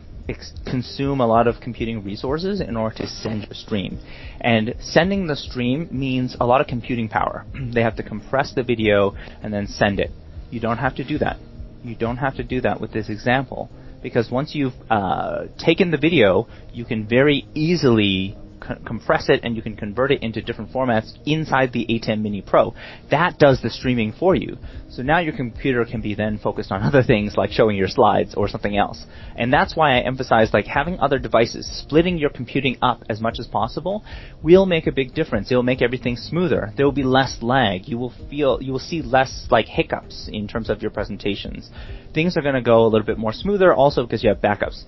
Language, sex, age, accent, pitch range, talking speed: English, male, 30-49, American, 110-135 Hz, 215 wpm